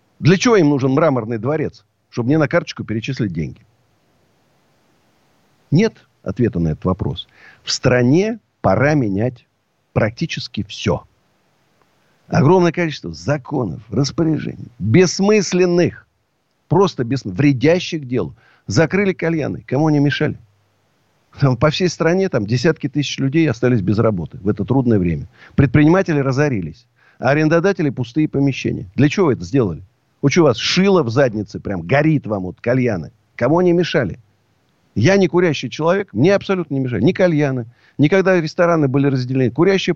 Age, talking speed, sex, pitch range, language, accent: 50-69, 140 wpm, male, 115-165 Hz, Russian, native